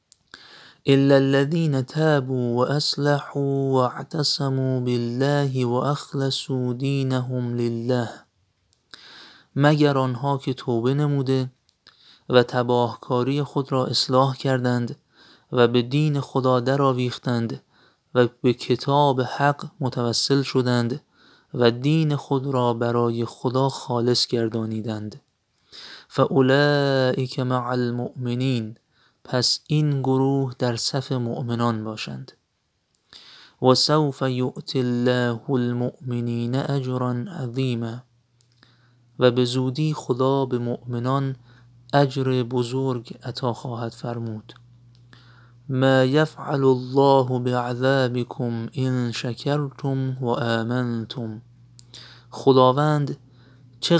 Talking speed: 85 wpm